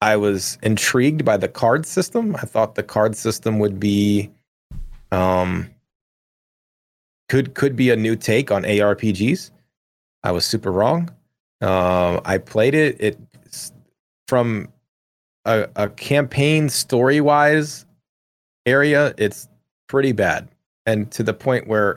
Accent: American